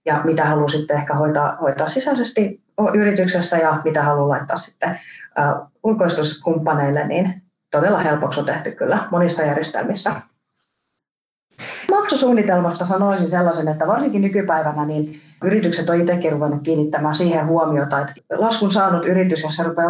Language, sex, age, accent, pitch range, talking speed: Finnish, female, 30-49, native, 150-175 Hz, 130 wpm